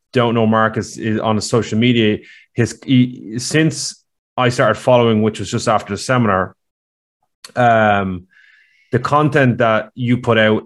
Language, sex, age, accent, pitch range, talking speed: English, male, 20-39, Irish, 105-120 Hz, 150 wpm